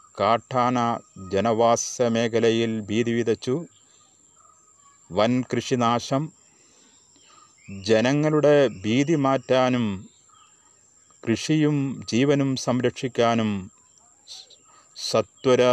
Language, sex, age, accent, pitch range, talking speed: Malayalam, male, 30-49, native, 110-135 Hz, 50 wpm